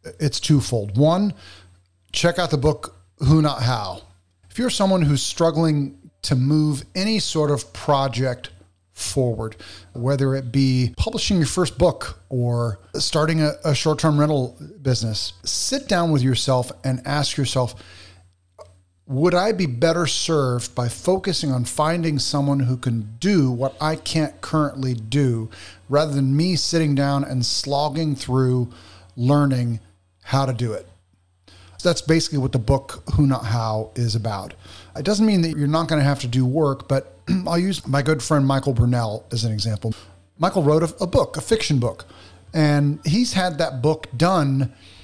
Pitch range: 115-160 Hz